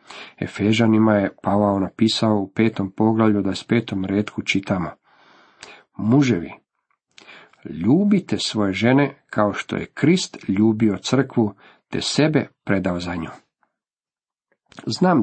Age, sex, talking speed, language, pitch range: 50-69, male, 110 wpm, Croatian, 105-130 Hz